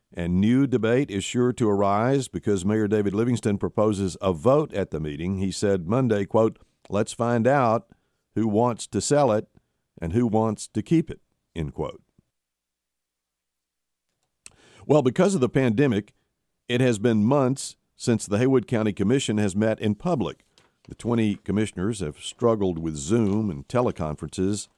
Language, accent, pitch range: English, American, 95-125 Hz